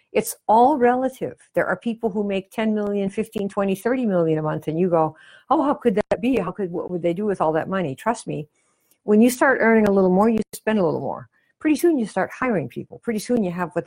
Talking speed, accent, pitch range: 255 wpm, American, 160-220 Hz